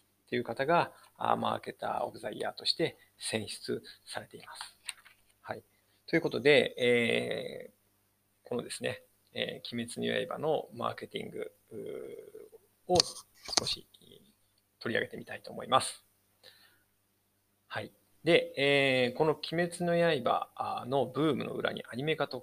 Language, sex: Japanese, male